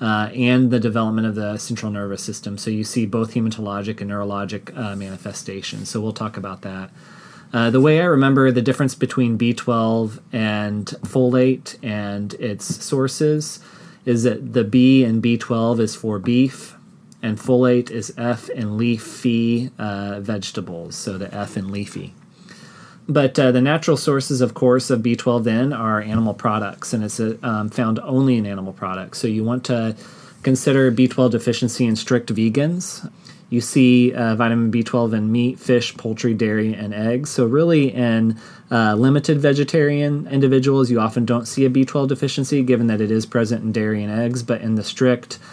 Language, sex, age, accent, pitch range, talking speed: English, male, 30-49, American, 110-130 Hz, 175 wpm